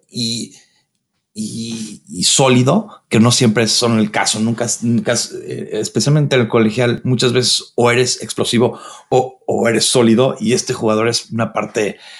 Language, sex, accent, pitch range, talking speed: Spanish, male, Mexican, 115-155 Hz, 155 wpm